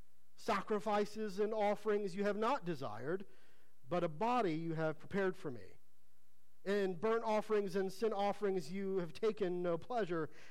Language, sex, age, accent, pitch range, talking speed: English, male, 50-69, American, 155-215 Hz, 150 wpm